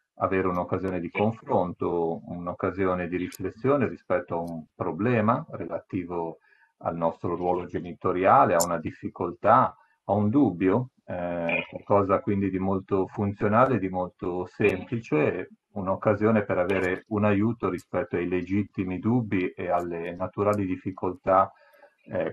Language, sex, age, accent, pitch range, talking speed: Italian, male, 40-59, native, 90-105 Hz, 120 wpm